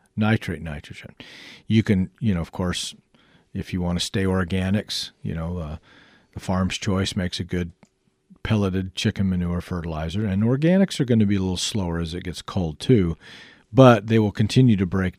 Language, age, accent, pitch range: English, 40-59, American, 85-105 Hz